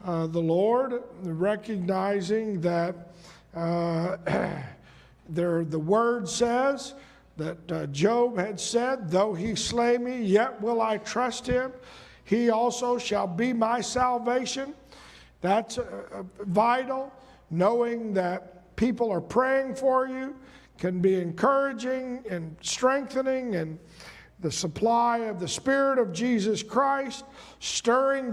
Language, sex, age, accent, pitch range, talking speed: English, male, 50-69, American, 200-255 Hz, 115 wpm